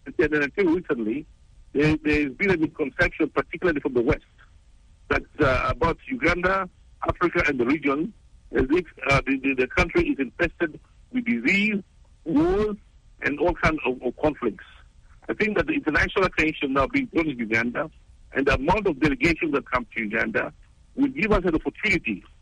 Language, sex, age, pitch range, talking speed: English, male, 60-79, 130-205 Hz, 170 wpm